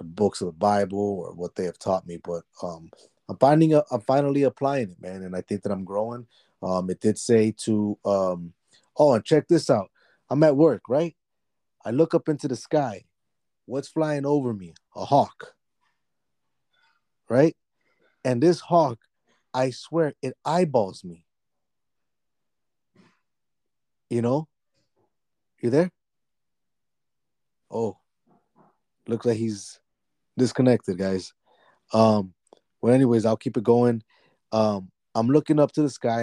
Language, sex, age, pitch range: English, male, 30-49, 95-125 Hz